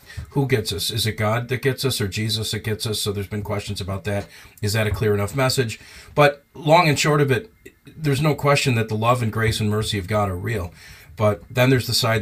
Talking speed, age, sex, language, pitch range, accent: 250 wpm, 40-59, male, English, 105-130 Hz, American